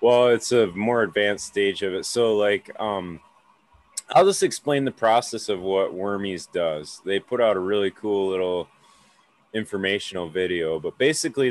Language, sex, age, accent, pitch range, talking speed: English, male, 30-49, American, 95-120 Hz, 160 wpm